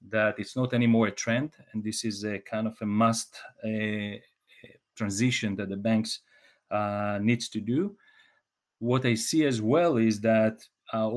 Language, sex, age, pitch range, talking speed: English, male, 40-59, 110-130 Hz, 160 wpm